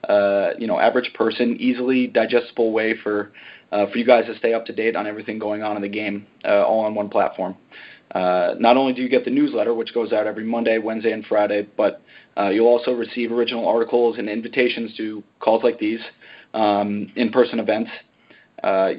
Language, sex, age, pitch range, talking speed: English, male, 30-49, 105-120 Hz, 200 wpm